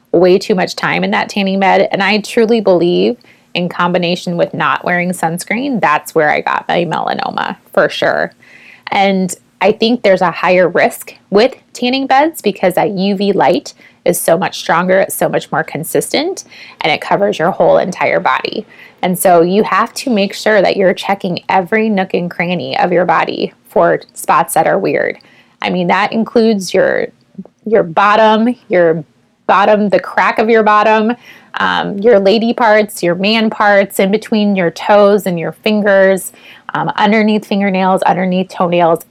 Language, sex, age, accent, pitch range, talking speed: English, female, 20-39, American, 180-225 Hz, 170 wpm